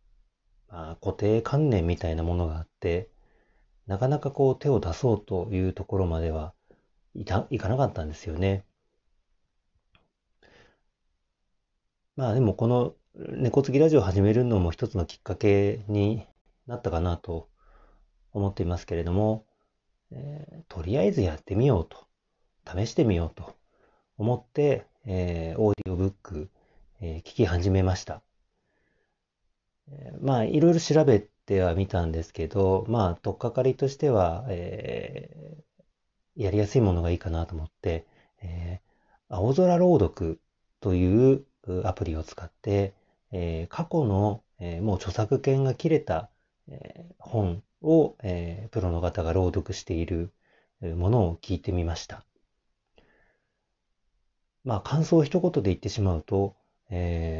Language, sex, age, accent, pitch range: Japanese, male, 40-59, native, 85-120 Hz